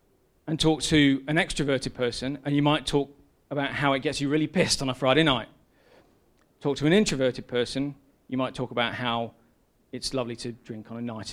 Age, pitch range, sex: 40-59, 120-155 Hz, male